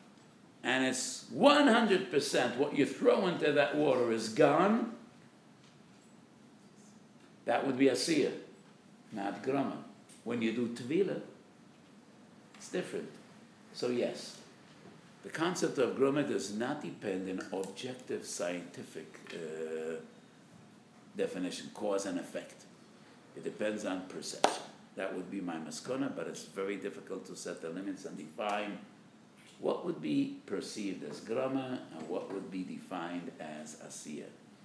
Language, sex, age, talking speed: English, male, 60-79, 125 wpm